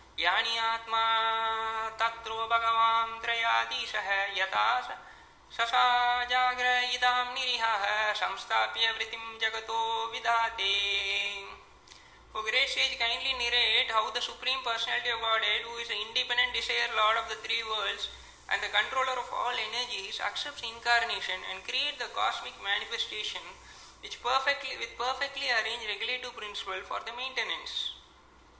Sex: male